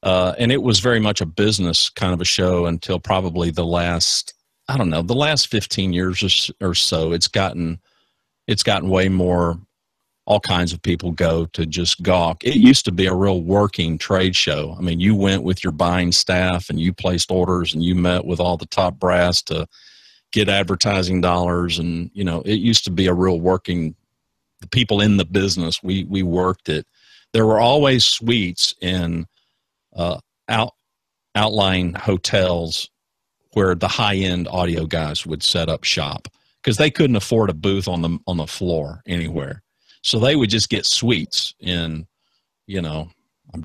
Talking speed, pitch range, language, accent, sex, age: 185 wpm, 85-100 Hz, English, American, male, 50-69